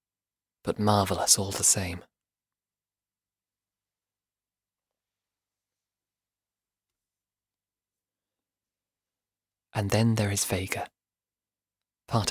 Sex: male